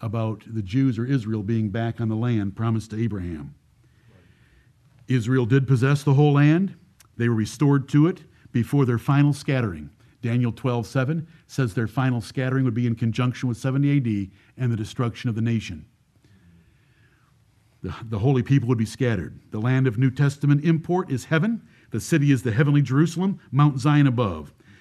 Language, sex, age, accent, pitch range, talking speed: English, male, 50-69, American, 115-135 Hz, 175 wpm